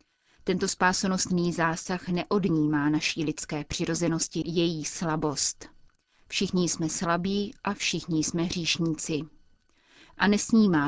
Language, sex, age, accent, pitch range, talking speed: Czech, female, 30-49, native, 160-190 Hz, 100 wpm